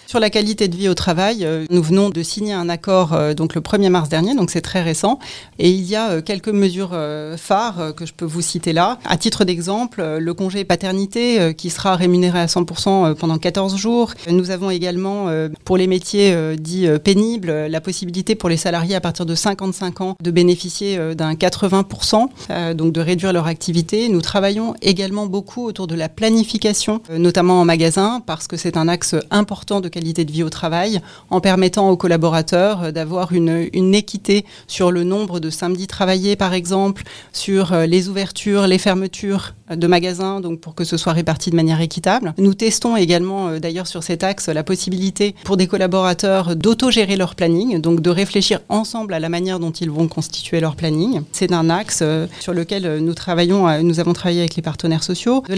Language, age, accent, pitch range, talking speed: French, 30-49, French, 170-200 Hz, 185 wpm